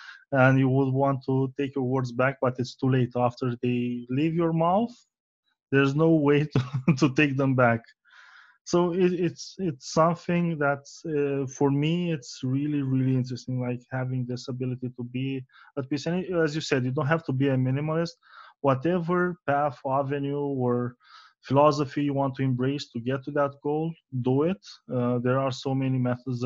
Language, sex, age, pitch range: English, male, 20-39, 130-150 Hz